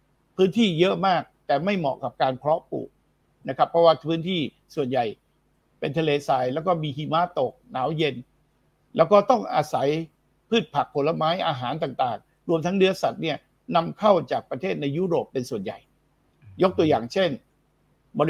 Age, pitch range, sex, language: 60-79, 150-190 Hz, male, Thai